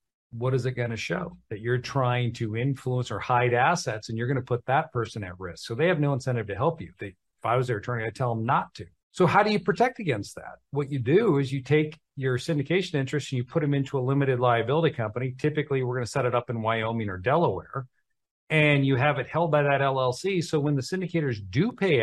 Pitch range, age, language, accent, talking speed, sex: 120-160 Hz, 40-59, English, American, 250 wpm, male